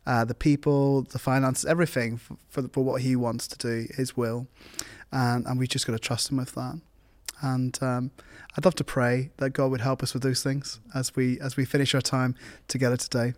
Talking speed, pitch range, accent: 225 wpm, 120-135 Hz, British